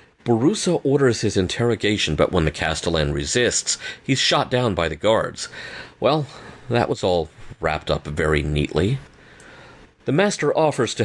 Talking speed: 145 wpm